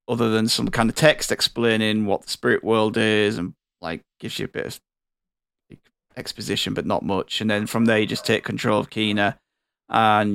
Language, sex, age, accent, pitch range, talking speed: English, male, 10-29, British, 110-130 Hz, 195 wpm